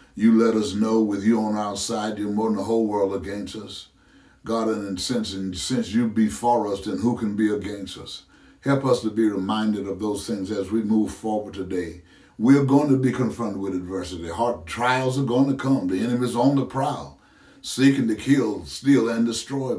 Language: English